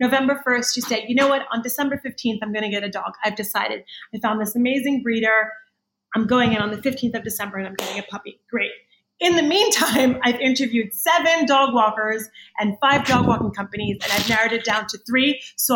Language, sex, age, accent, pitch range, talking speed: English, female, 30-49, American, 220-275 Hz, 220 wpm